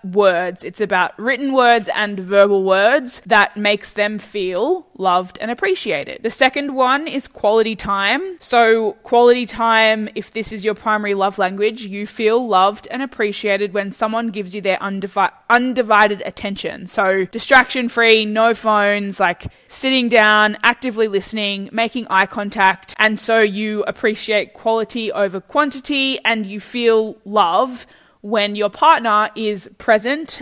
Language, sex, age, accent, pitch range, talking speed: English, female, 10-29, Australian, 205-235 Hz, 140 wpm